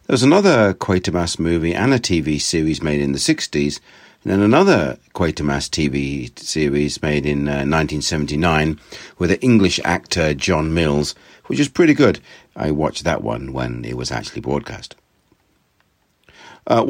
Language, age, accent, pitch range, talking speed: English, 60-79, British, 75-100 Hz, 150 wpm